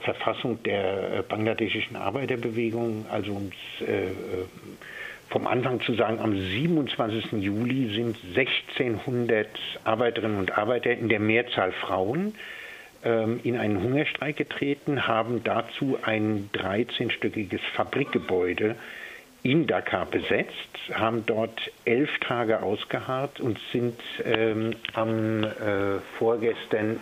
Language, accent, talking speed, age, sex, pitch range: German, German, 105 wpm, 60-79, male, 100-120 Hz